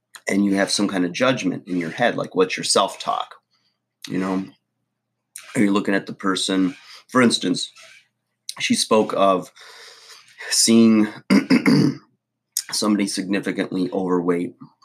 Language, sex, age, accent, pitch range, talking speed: English, male, 30-49, American, 85-100 Hz, 125 wpm